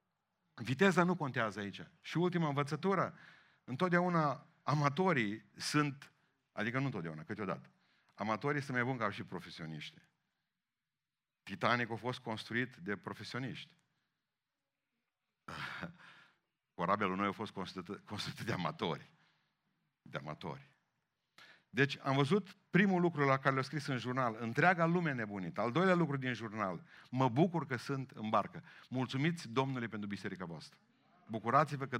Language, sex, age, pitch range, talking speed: Romanian, male, 50-69, 115-170 Hz, 130 wpm